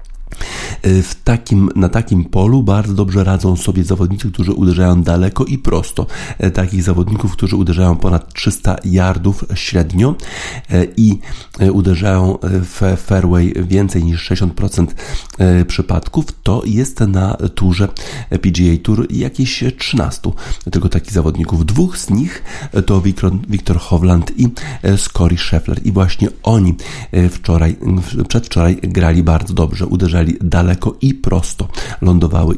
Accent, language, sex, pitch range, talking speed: native, Polish, male, 90-110 Hz, 120 wpm